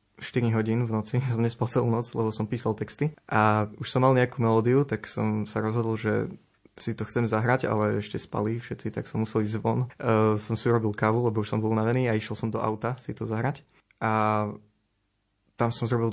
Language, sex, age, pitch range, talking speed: Slovak, male, 20-39, 110-120 Hz, 215 wpm